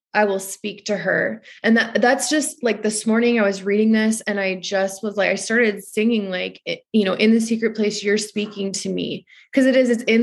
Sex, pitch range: female, 190-215 Hz